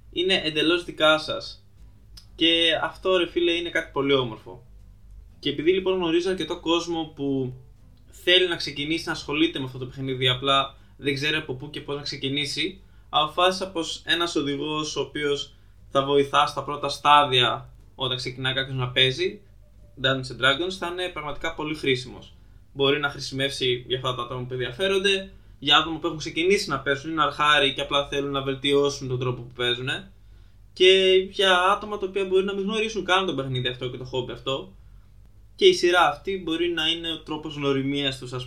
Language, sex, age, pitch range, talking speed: Greek, male, 20-39, 125-160 Hz, 200 wpm